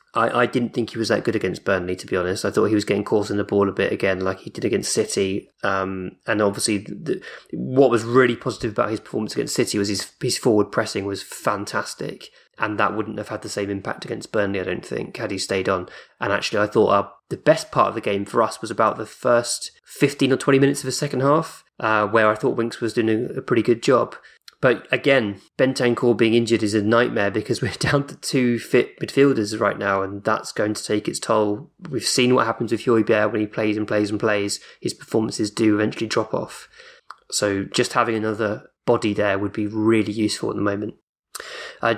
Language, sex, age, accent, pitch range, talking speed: English, male, 20-39, British, 105-120 Hz, 225 wpm